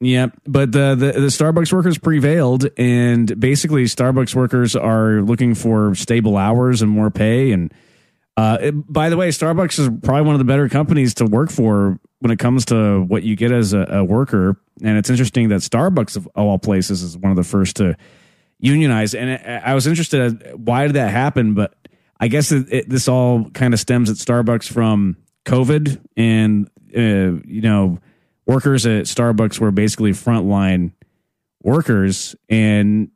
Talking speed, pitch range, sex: 175 wpm, 100-130 Hz, male